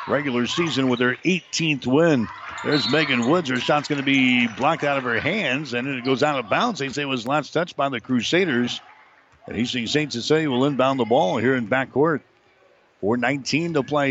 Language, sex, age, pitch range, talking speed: English, male, 60-79, 125-145 Hz, 205 wpm